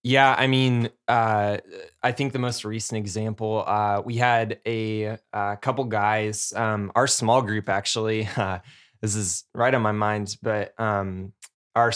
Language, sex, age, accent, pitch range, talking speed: English, male, 20-39, American, 105-120 Hz, 160 wpm